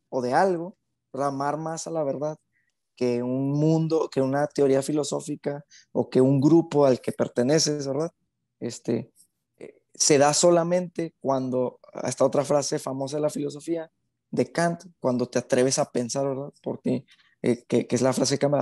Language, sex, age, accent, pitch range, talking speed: Spanish, male, 20-39, Mexican, 130-160 Hz, 170 wpm